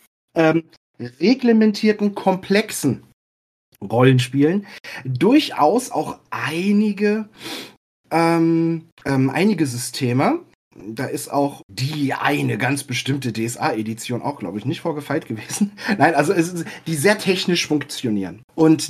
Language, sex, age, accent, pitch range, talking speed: German, male, 40-59, German, 130-175 Hz, 110 wpm